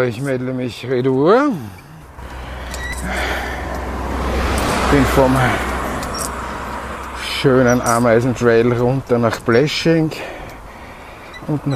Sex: male